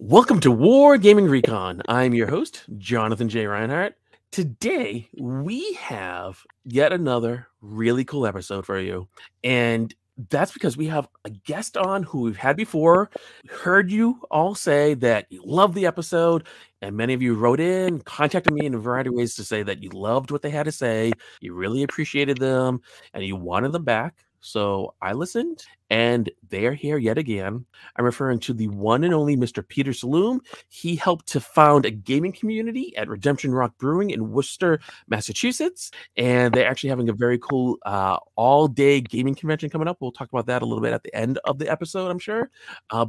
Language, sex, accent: English, male, American